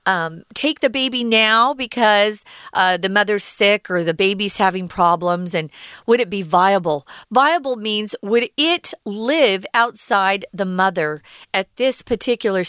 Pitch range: 185-255 Hz